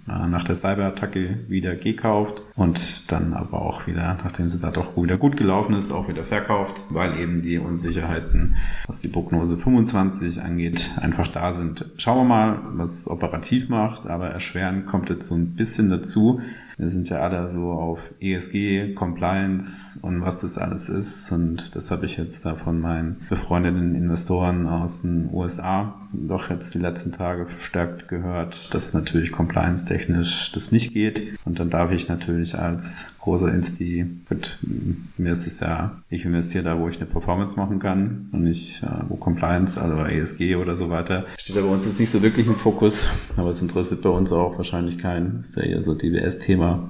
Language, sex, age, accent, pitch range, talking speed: German, male, 30-49, German, 85-95 Hz, 180 wpm